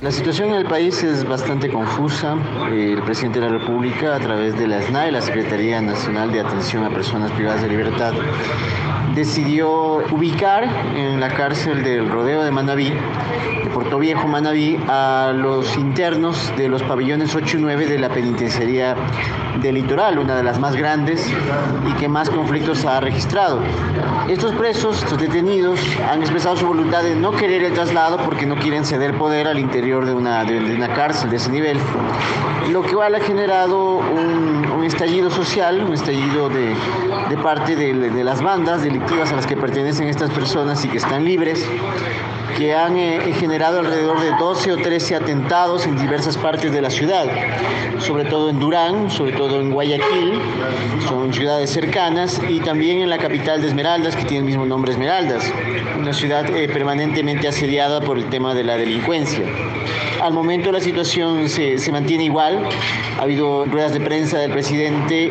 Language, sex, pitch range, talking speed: Spanish, male, 130-160 Hz, 175 wpm